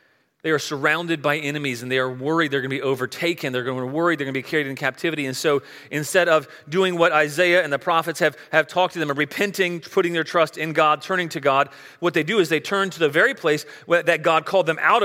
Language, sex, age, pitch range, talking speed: English, male, 30-49, 140-180 Hz, 260 wpm